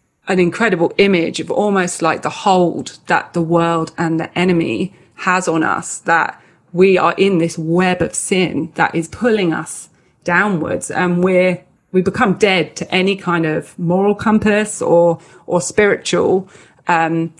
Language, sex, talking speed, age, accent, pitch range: English, female, 155 wpm, 30-49, British, 170-200 Hz